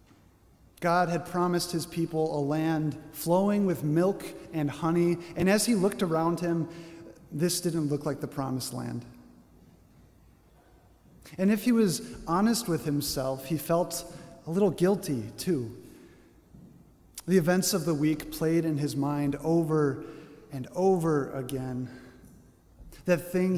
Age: 30-49